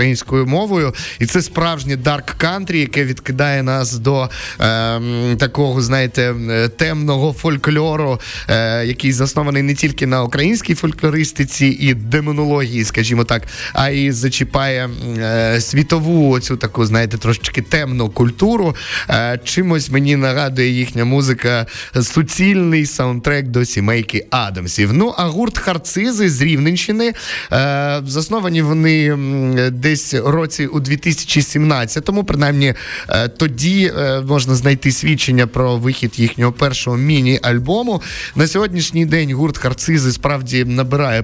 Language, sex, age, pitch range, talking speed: Ukrainian, male, 20-39, 120-155 Hz, 115 wpm